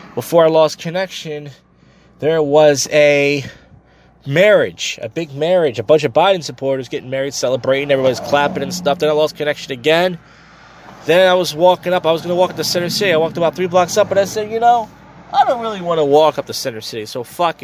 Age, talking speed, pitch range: 20-39, 220 wpm, 130-175 Hz